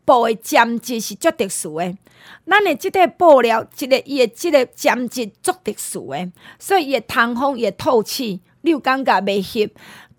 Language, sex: Chinese, female